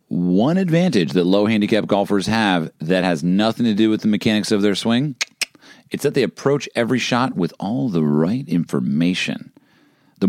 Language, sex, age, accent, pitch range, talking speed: English, male, 40-59, American, 90-120 Hz, 170 wpm